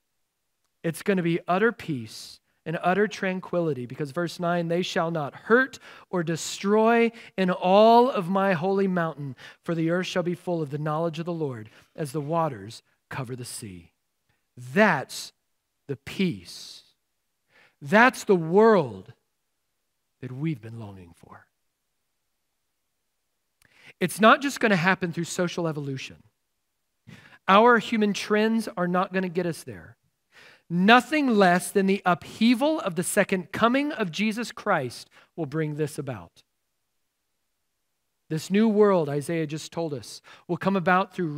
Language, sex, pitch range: English, male, 155-205 Hz